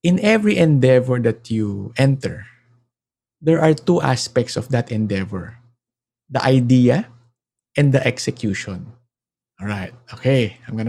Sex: male